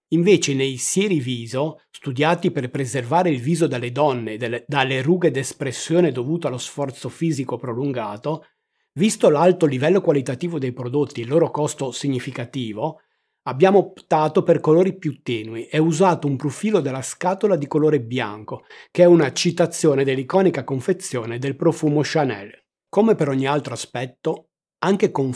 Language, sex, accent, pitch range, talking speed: Italian, male, native, 130-170 Hz, 145 wpm